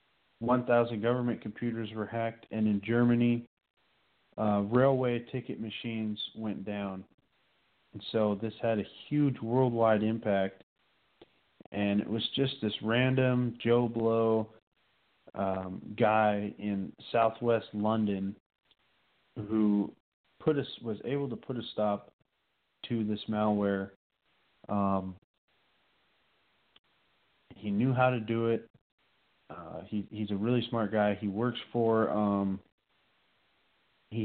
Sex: male